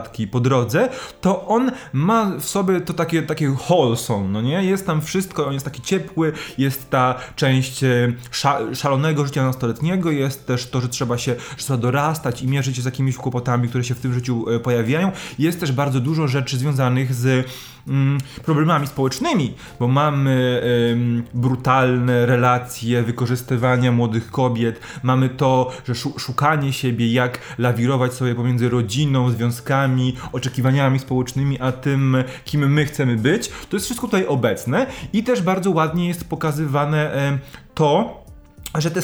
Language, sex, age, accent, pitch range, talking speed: Polish, male, 20-39, native, 125-160 Hz, 145 wpm